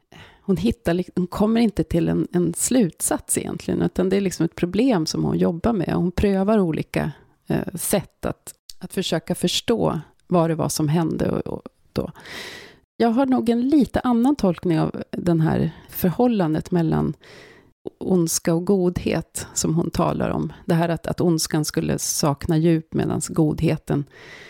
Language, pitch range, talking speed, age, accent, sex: English, 170-210 Hz, 160 wpm, 30-49, Swedish, female